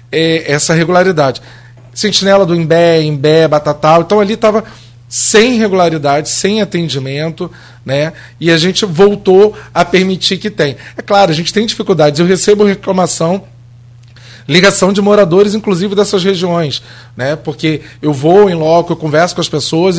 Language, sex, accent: Portuguese, male, Brazilian